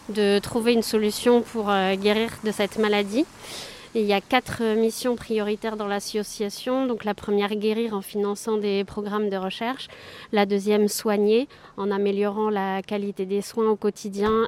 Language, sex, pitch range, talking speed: French, female, 205-225 Hz, 165 wpm